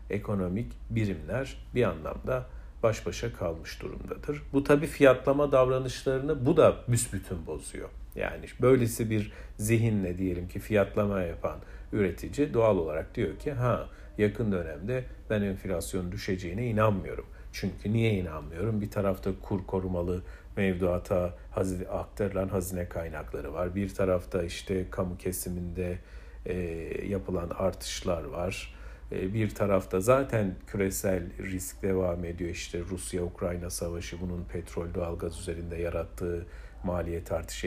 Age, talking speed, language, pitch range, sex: 50-69, 120 wpm, Turkish, 90-110 Hz, male